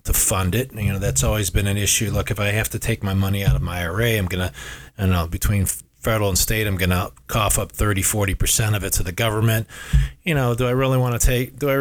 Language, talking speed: English, 280 wpm